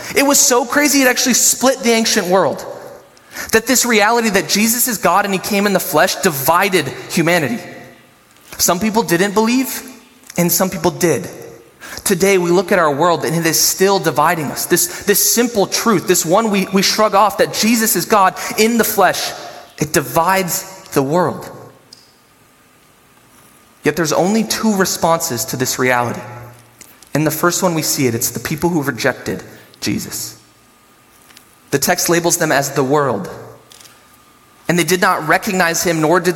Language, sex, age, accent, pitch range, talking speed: English, male, 20-39, American, 170-225 Hz, 170 wpm